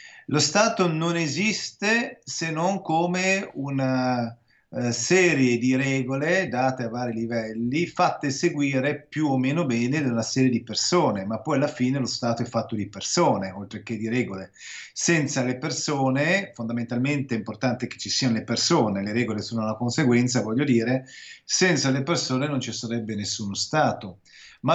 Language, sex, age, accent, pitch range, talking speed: Italian, male, 40-59, native, 120-165 Hz, 165 wpm